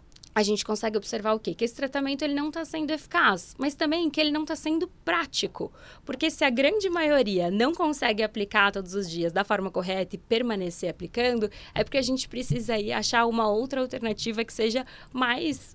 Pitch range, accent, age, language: 200-260 Hz, Brazilian, 20-39, Portuguese